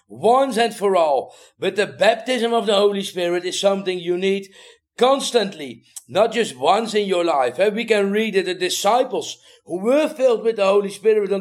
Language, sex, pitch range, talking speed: English, male, 195-245 Hz, 190 wpm